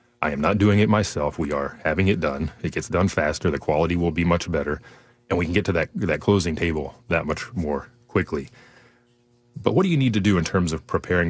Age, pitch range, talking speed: 30-49, 80-110 Hz, 240 wpm